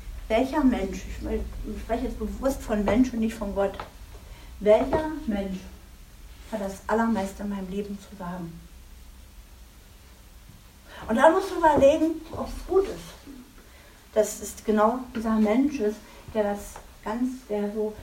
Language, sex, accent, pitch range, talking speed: German, female, German, 210-275 Hz, 140 wpm